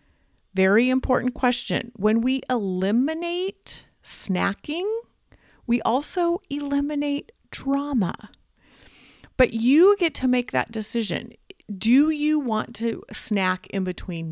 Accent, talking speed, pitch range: American, 105 wpm, 185-260 Hz